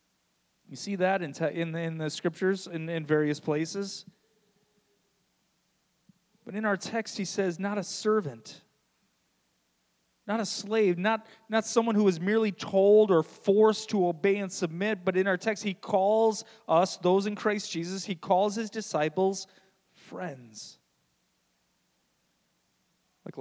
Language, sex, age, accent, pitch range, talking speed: English, male, 30-49, American, 125-190 Hz, 145 wpm